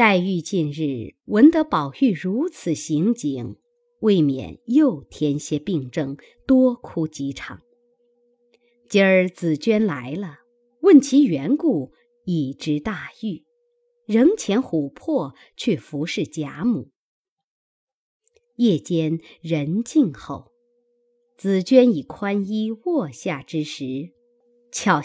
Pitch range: 170-285 Hz